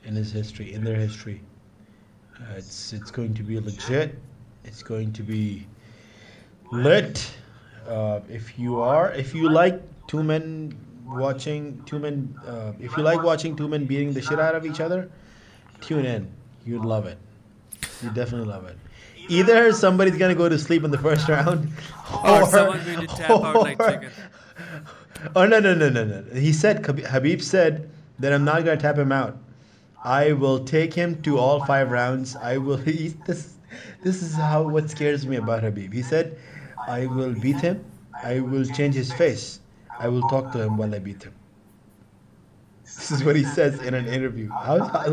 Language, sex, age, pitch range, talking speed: English, male, 30-49, 120-170 Hz, 180 wpm